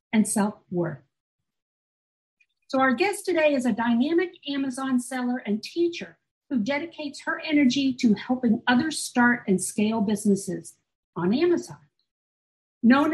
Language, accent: English, American